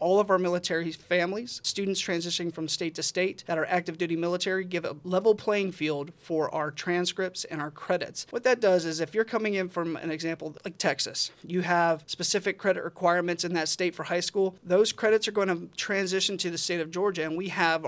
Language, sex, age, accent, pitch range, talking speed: English, male, 30-49, American, 160-190 Hz, 220 wpm